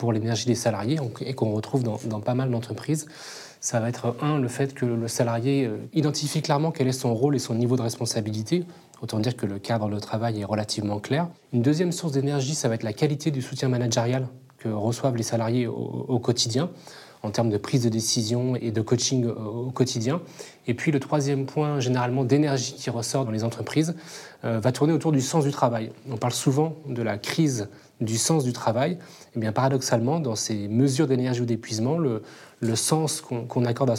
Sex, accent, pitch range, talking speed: male, French, 115-145 Hz, 210 wpm